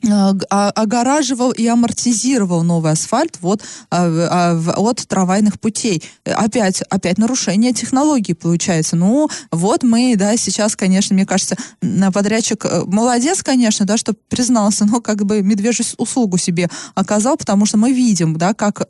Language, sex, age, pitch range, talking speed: Russian, female, 20-39, 185-235 Hz, 135 wpm